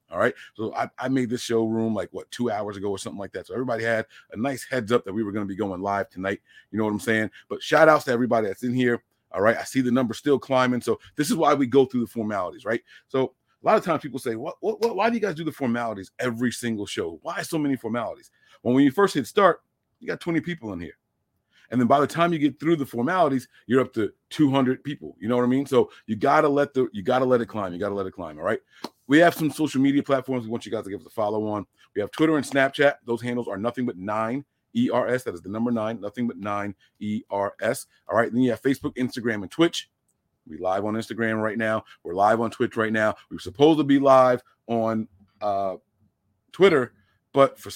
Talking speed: 260 wpm